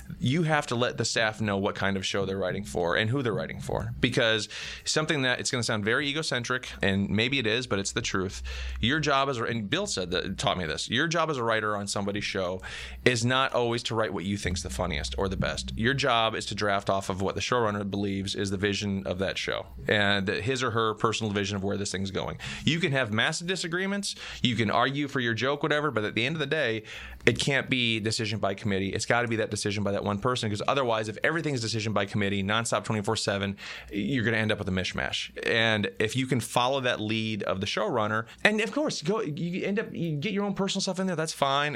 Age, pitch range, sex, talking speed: 30-49, 105-140 Hz, male, 255 wpm